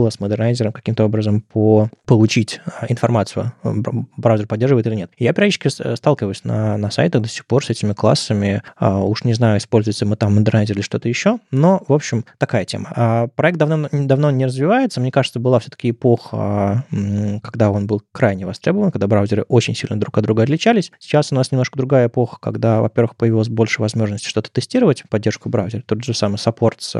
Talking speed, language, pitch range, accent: 180 wpm, Russian, 110-135 Hz, native